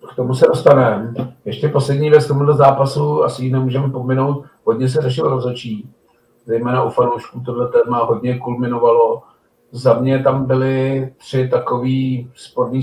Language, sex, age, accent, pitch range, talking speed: Czech, male, 50-69, native, 120-135 Hz, 150 wpm